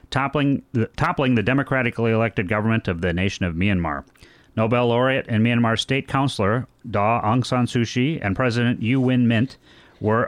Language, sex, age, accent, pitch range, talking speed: English, male, 40-59, American, 100-130 Hz, 165 wpm